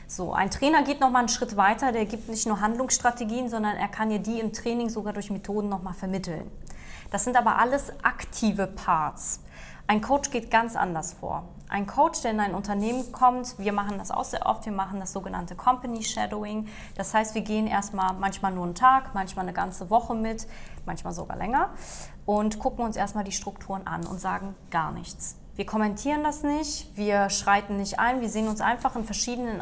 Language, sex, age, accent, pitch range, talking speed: German, female, 20-39, German, 190-235 Hz, 200 wpm